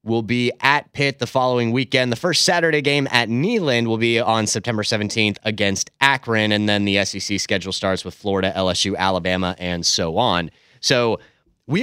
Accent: American